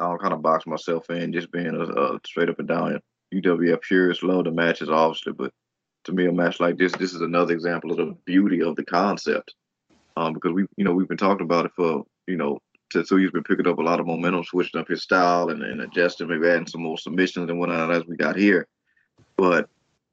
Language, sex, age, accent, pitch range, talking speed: English, male, 20-39, American, 85-95 Hz, 240 wpm